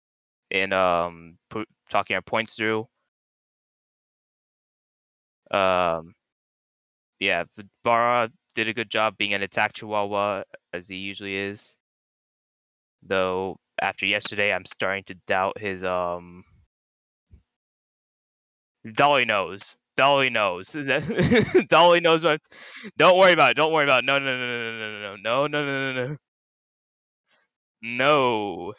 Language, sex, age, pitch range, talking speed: English, male, 20-39, 100-150 Hz, 125 wpm